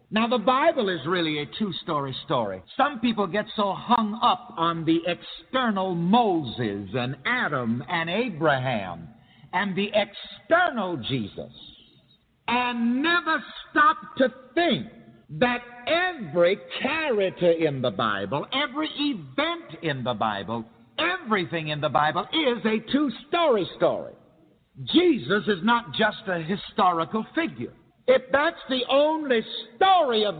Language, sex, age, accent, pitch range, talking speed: English, male, 50-69, American, 170-265 Hz, 125 wpm